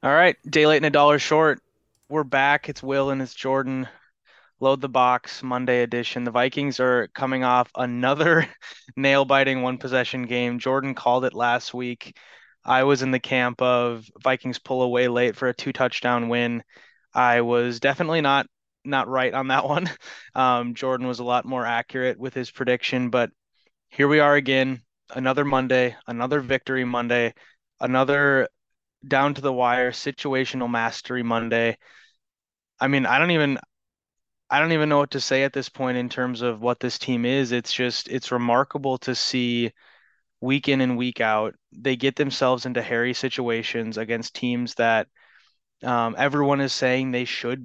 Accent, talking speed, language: American, 170 wpm, English